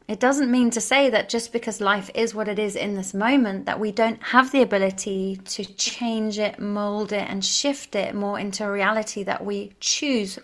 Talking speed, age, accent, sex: 215 wpm, 30-49, British, female